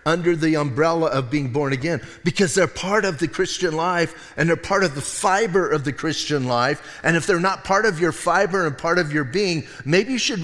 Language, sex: English, male